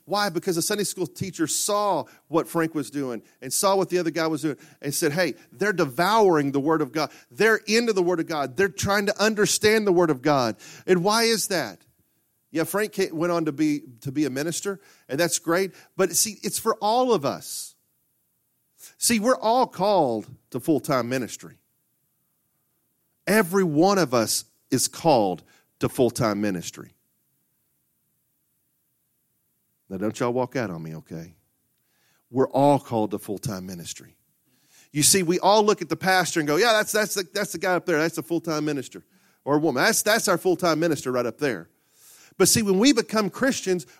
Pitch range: 150-205 Hz